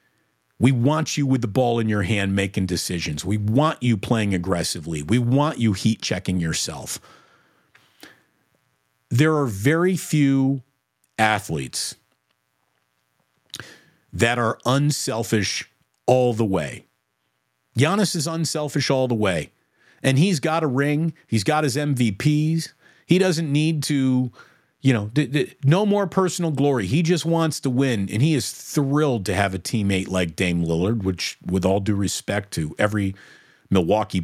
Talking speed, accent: 145 wpm, American